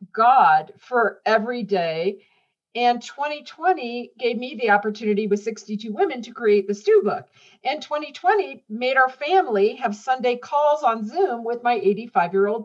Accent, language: American, English